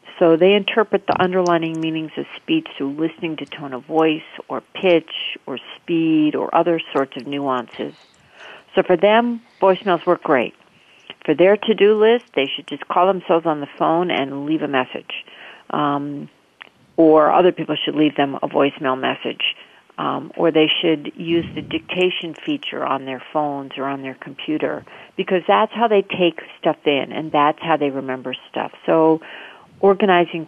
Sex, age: female, 50-69